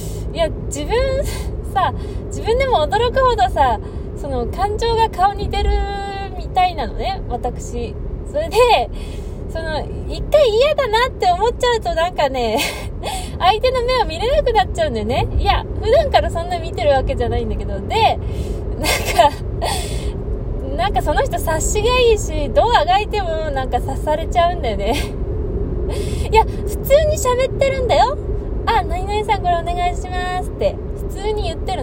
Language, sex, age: Japanese, female, 20-39